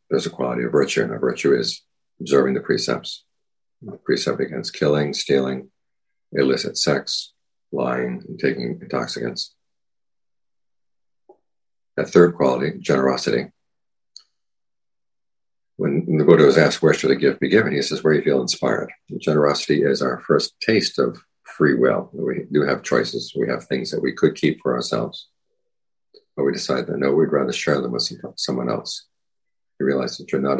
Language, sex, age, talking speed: English, male, 50-69, 165 wpm